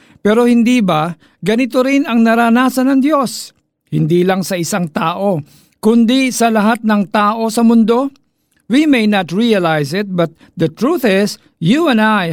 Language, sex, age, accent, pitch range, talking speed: Filipino, male, 50-69, native, 165-215 Hz, 160 wpm